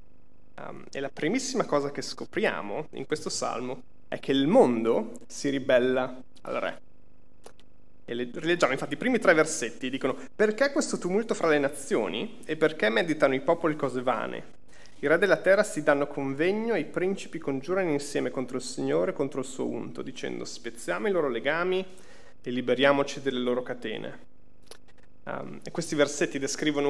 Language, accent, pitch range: Italian, native, 135-185 Hz